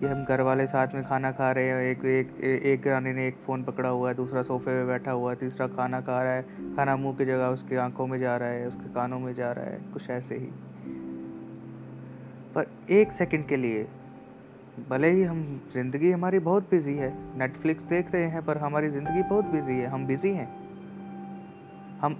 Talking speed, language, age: 210 wpm, Hindi, 30-49